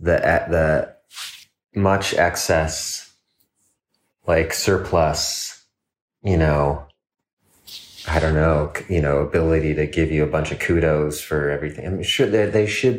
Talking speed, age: 130 wpm, 30-49